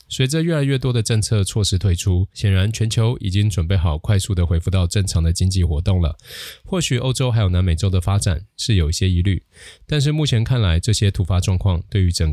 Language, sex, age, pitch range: Chinese, male, 20-39, 90-110 Hz